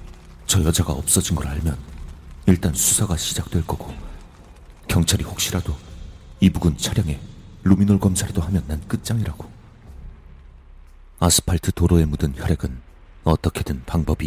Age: 40-59